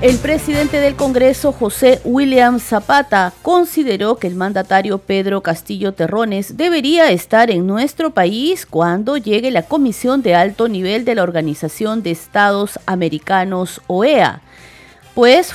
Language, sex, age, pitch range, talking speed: Spanish, female, 40-59, 190-275 Hz, 130 wpm